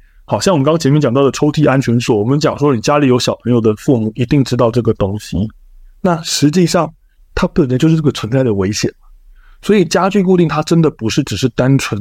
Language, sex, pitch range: Chinese, male, 105-150 Hz